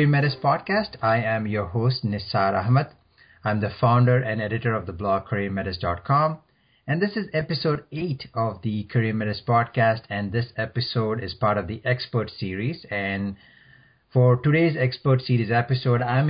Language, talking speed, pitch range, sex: English, 160 wpm, 105-130 Hz, male